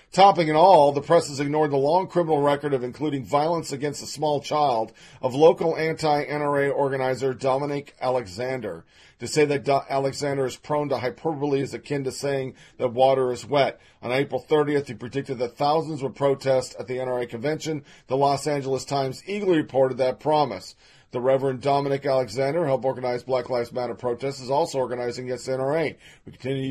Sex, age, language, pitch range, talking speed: male, 40-59, English, 120-145 Hz, 180 wpm